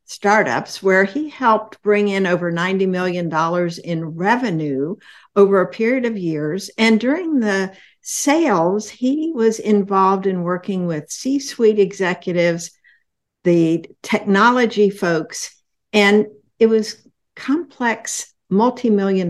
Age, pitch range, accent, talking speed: 60-79, 170-215 Hz, American, 120 wpm